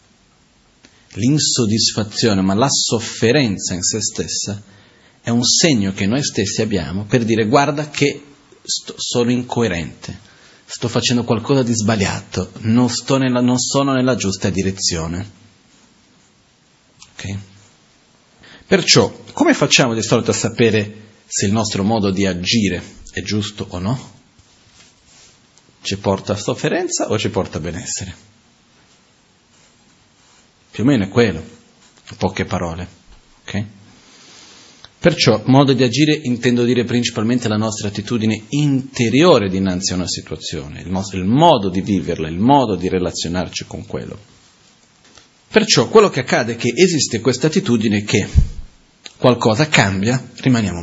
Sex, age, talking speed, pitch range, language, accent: male, 40-59, 125 wpm, 95-125 Hz, Italian, native